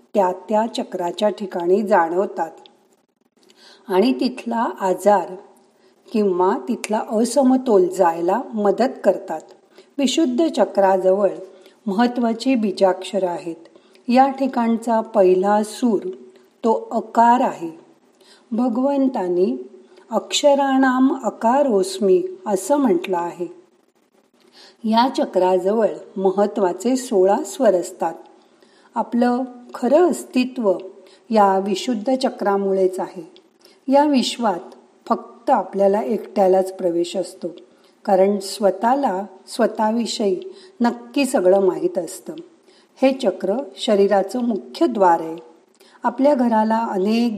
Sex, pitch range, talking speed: female, 190-255 Hz, 85 wpm